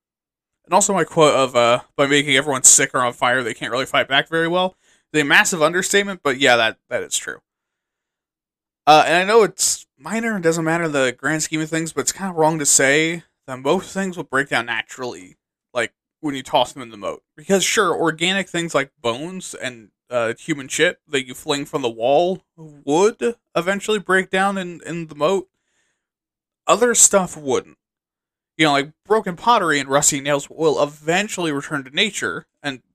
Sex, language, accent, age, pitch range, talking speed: male, English, American, 20-39, 140-185 Hz, 195 wpm